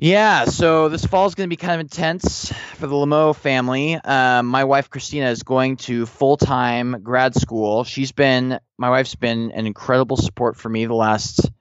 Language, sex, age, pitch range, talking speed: English, male, 20-39, 110-130 Hz, 195 wpm